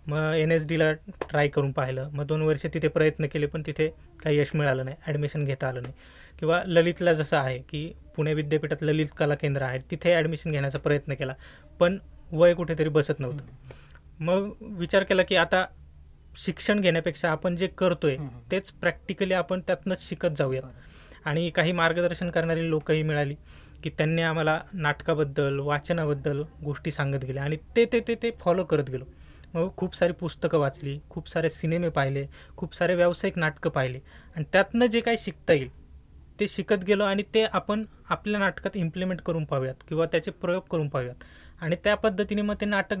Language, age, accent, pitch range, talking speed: Hindi, 20-39, native, 145-185 Hz, 150 wpm